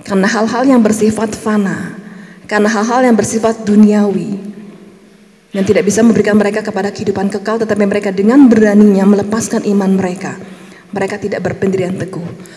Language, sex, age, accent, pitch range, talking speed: Indonesian, female, 20-39, native, 195-215 Hz, 140 wpm